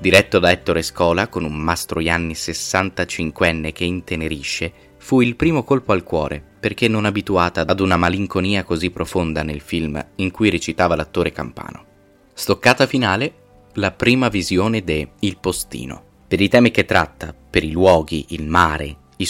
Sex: male